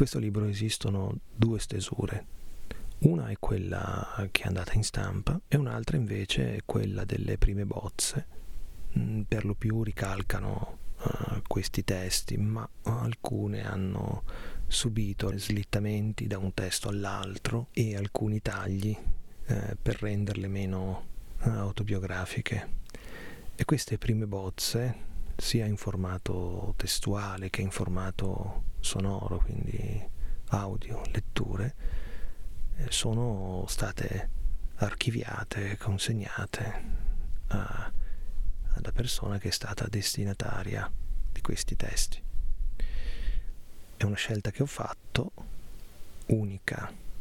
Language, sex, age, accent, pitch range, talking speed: Italian, male, 30-49, native, 95-110 Hz, 105 wpm